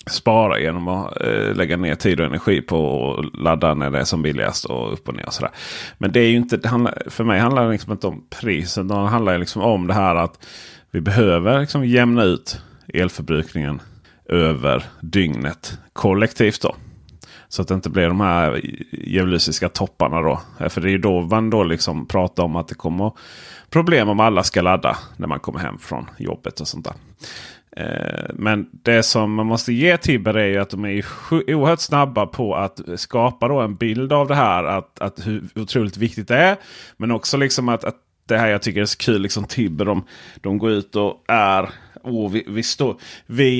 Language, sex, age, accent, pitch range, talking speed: Swedish, male, 30-49, native, 90-120 Hz, 200 wpm